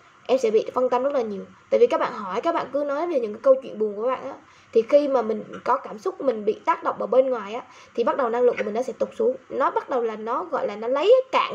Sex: female